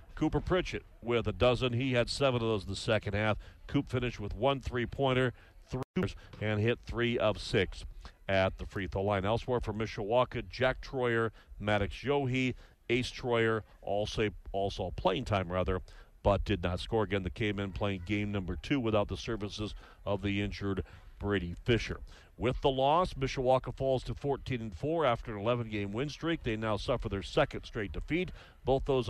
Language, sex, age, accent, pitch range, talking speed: English, male, 40-59, American, 100-125 Hz, 180 wpm